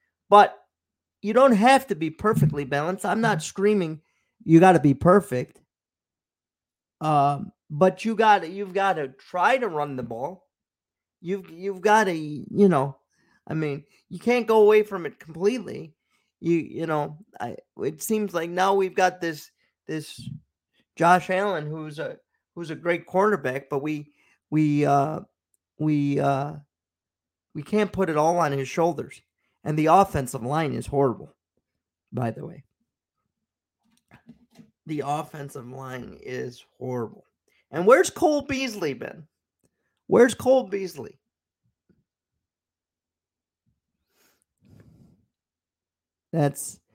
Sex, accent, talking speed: male, American, 130 wpm